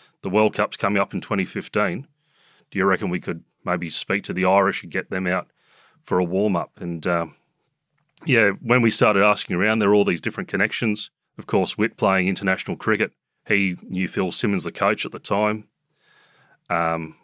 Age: 30-49